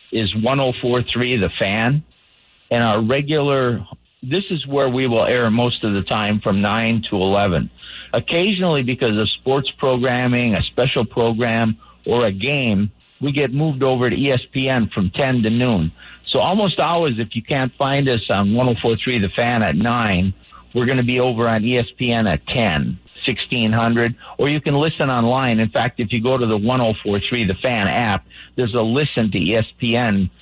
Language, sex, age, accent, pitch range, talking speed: English, male, 50-69, American, 110-135 Hz, 170 wpm